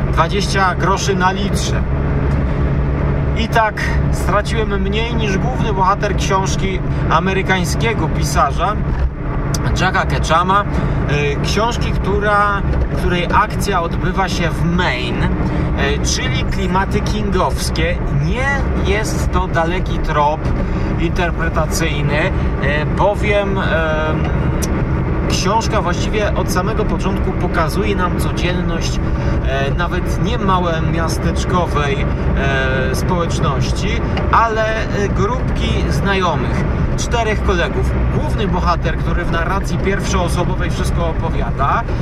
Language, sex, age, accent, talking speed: Polish, male, 30-49, native, 90 wpm